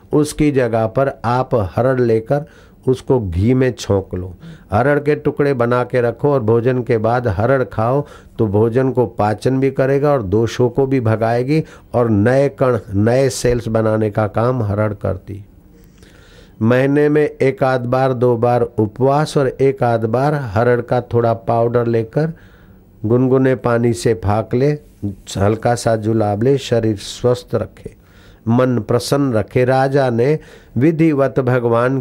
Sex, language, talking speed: male, Hindi, 150 wpm